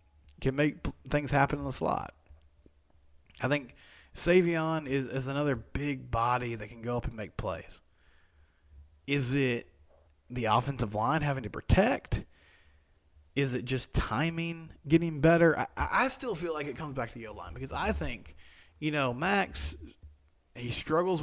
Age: 20-39